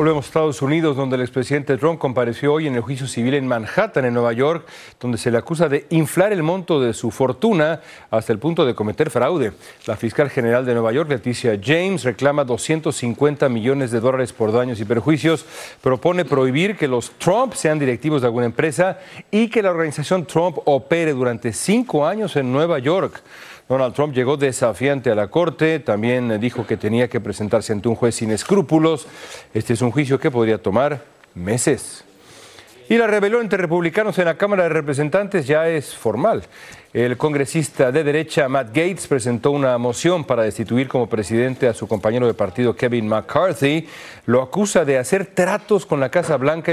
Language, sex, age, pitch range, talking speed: Spanish, male, 40-59, 120-160 Hz, 185 wpm